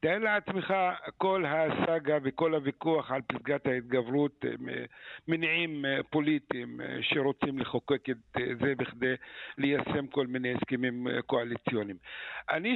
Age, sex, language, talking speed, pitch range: 50-69, male, Hebrew, 105 wpm, 150-200 Hz